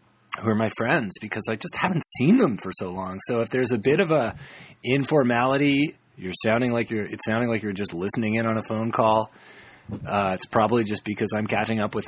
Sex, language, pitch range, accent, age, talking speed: male, English, 100-125 Hz, American, 30-49, 225 wpm